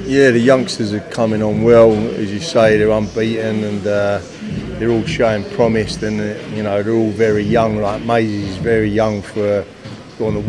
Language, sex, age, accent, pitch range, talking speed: English, male, 30-49, British, 100-110 Hz, 190 wpm